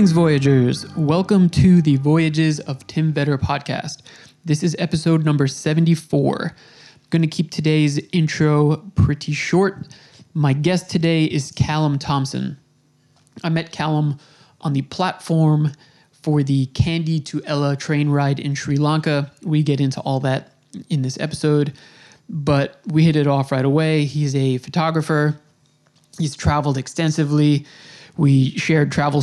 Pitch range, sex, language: 140-160 Hz, male, English